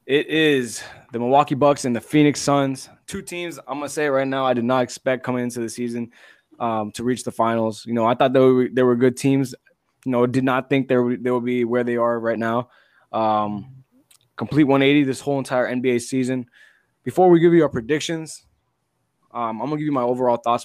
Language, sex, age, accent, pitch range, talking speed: English, male, 20-39, American, 115-135 Hz, 220 wpm